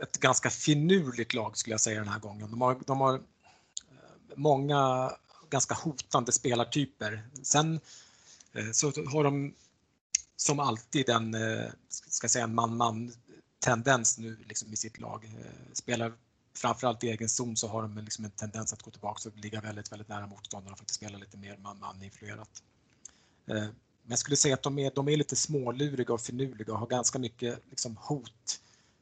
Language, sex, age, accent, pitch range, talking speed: Swedish, male, 30-49, Norwegian, 110-130 Hz, 165 wpm